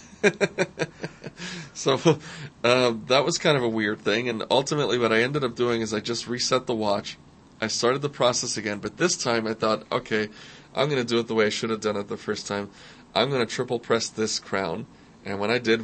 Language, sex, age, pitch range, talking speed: English, male, 30-49, 110-135 Hz, 225 wpm